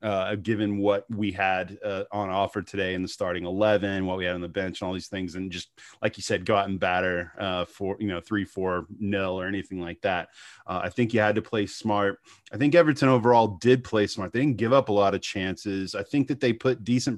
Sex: male